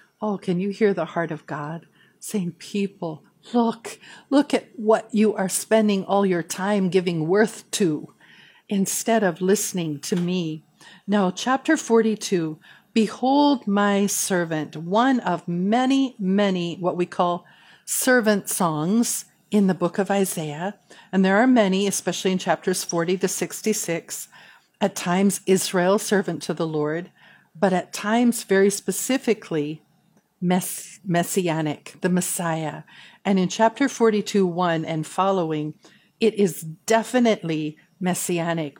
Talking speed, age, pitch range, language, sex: 130 wpm, 50-69, 170-215 Hz, English, female